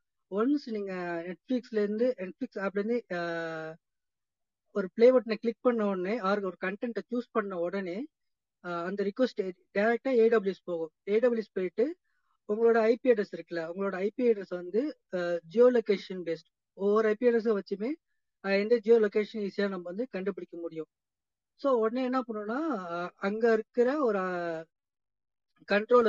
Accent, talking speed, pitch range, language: native, 130 wpm, 185-240 Hz, Tamil